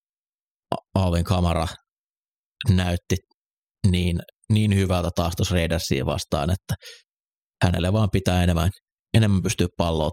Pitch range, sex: 85-95 Hz, male